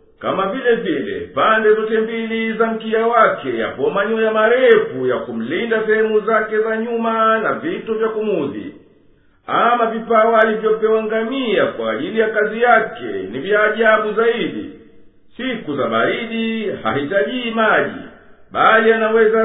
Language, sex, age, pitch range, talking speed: Swahili, male, 50-69, 220-235 Hz, 130 wpm